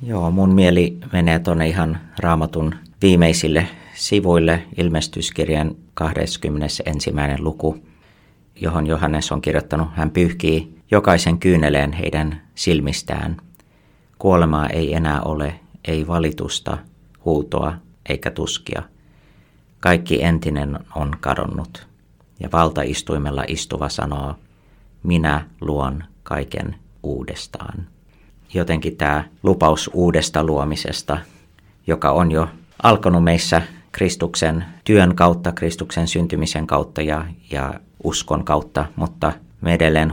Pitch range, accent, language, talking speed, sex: 75-85 Hz, native, Finnish, 100 wpm, male